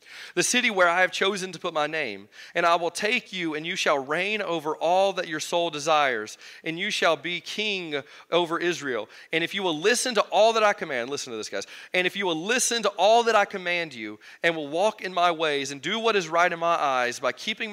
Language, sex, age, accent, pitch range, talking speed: English, male, 30-49, American, 125-180 Hz, 245 wpm